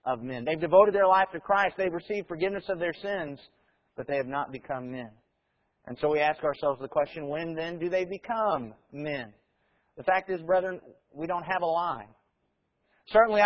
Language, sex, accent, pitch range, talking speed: English, male, American, 155-205 Hz, 190 wpm